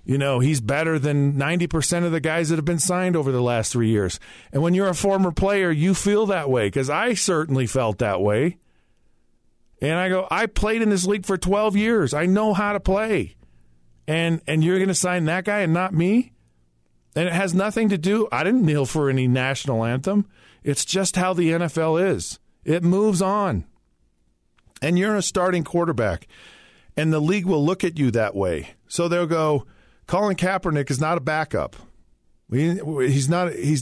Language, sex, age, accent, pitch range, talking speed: English, male, 40-59, American, 130-185 Hz, 195 wpm